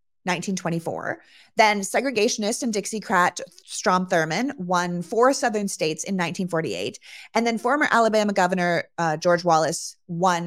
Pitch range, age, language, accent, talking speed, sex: 175-230 Hz, 30-49, English, American, 125 wpm, female